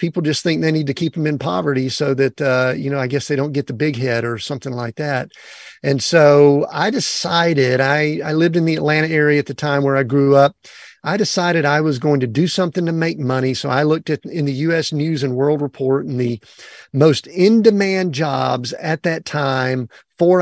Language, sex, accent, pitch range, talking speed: English, male, American, 130-160 Hz, 225 wpm